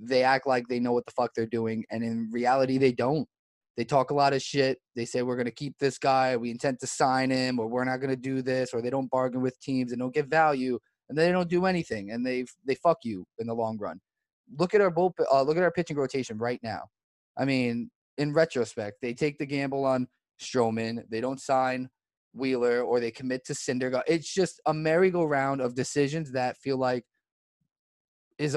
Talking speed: 215 wpm